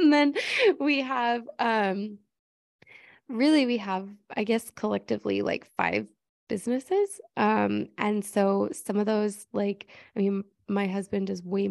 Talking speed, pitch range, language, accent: 140 wpm, 180-225 Hz, English, American